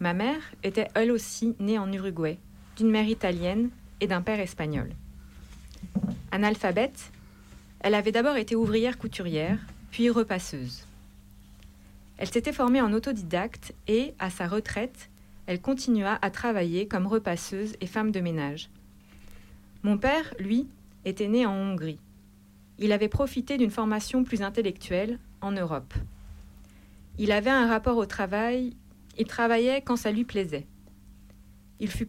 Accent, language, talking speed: French, French, 135 wpm